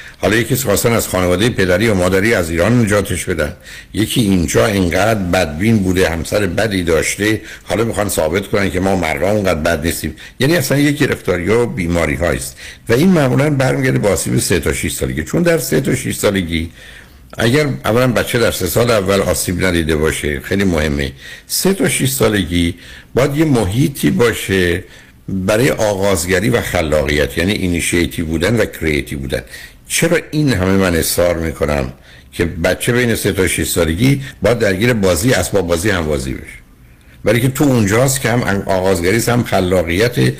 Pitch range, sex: 80-115 Hz, male